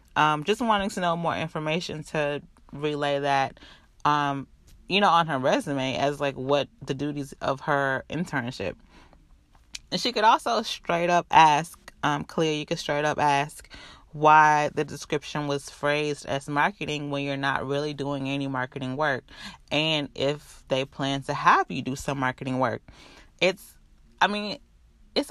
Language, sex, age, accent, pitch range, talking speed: English, female, 20-39, American, 140-170 Hz, 160 wpm